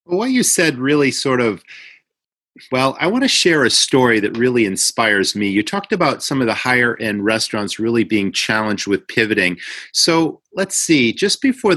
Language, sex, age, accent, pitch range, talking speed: English, male, 40-59, American, 110-150 Hz, 185 wpm